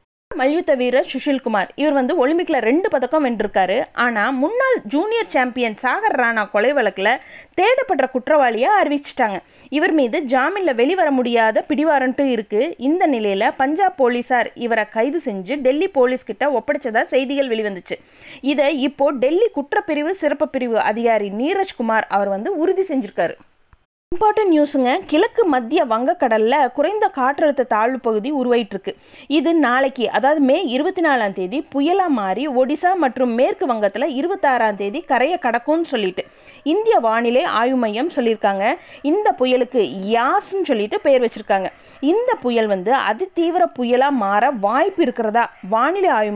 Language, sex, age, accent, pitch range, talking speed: Tamil, female, 20-39, native, 230-310 Hz, 130 wpm